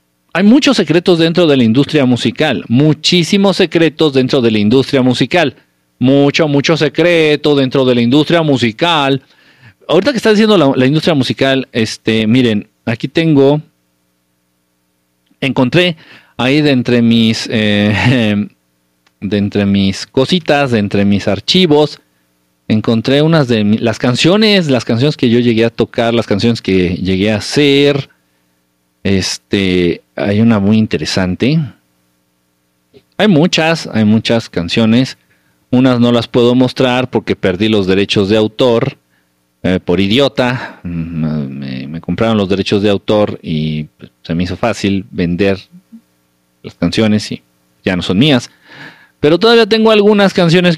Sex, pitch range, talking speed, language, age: male, 85-140 Hz, 140 wpm, Spanish, 40-59